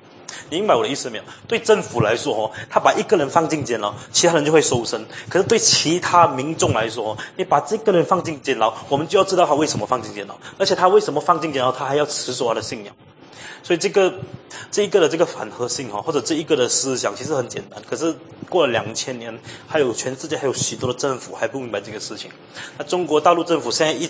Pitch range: 125-170 Hz